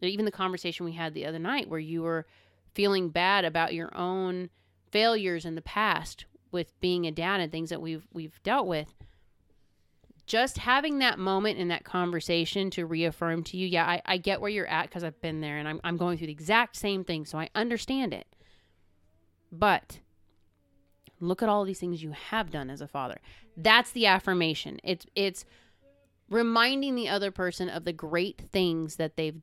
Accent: American